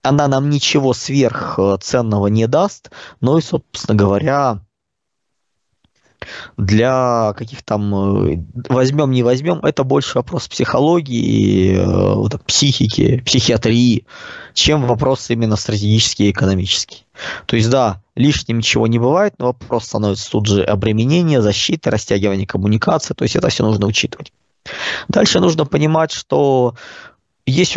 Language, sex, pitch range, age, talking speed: Russian, male, 105-145 Hz, 20-39, 120 wpm